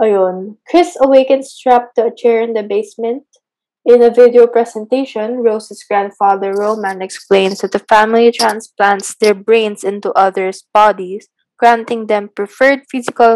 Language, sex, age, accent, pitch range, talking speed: Filipino, female, 20-39, native, 210-255 Hz, 135 wpm